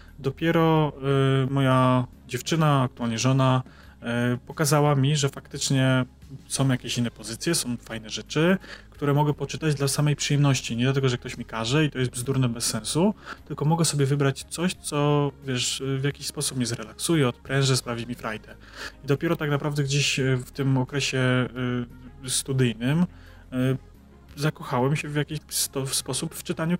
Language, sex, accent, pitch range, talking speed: Polish, male, native, 120-145 Hz, 155 wpm